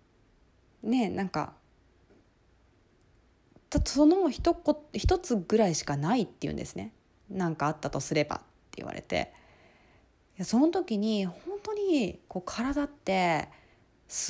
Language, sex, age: Japanese, female, 20-39